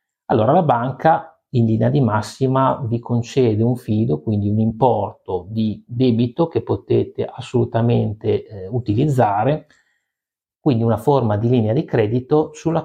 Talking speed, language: 135 wpm, Italian